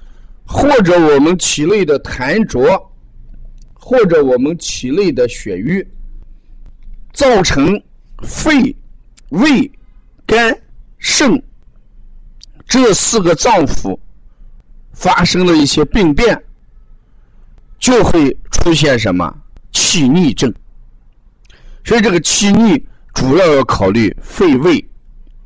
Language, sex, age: Chinese, male, 50-69